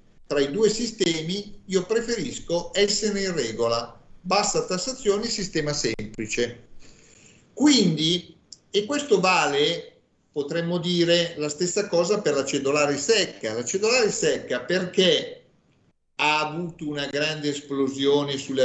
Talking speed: 115 wpm